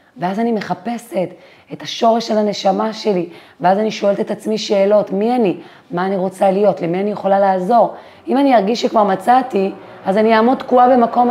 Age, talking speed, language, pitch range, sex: 30-49, 180 wpm, Hebrew, 175-210 Hz, female